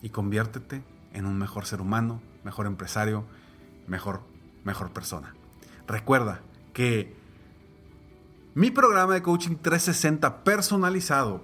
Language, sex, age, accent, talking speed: Spanish, male, 40-59, Mexican, 105 wpm